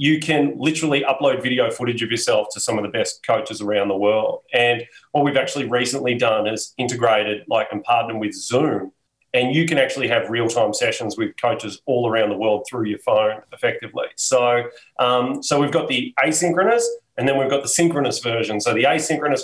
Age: 30-49